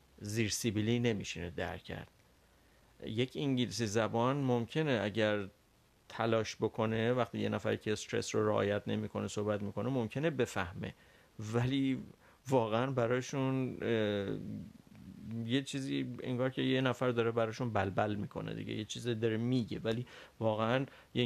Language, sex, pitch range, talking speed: Persian, male, 105-120 Hz, 125 wpm